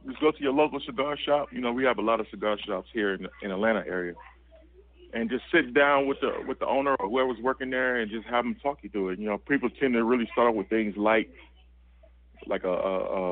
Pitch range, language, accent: 95-120 Hz, English, American